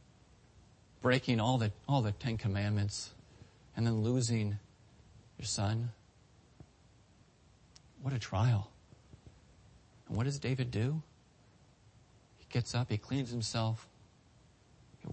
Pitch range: 105-125 Hz